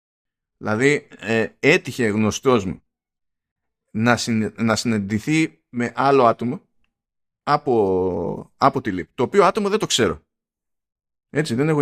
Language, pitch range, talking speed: Greek, 115-175 Hz, 125 wpm